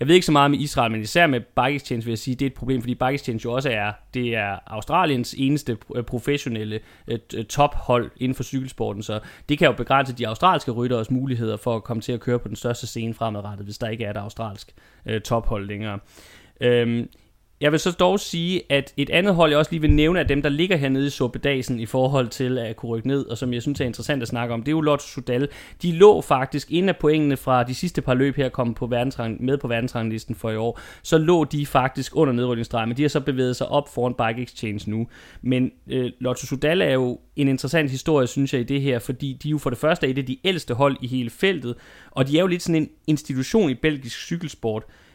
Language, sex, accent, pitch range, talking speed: Danish, male, native, 120-145 Hz, 240 wpm